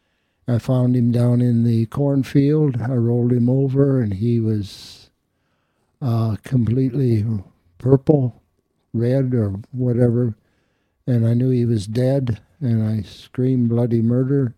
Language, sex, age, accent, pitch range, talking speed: English, male, 60-79, American, 110-130 Hz, 130 wpm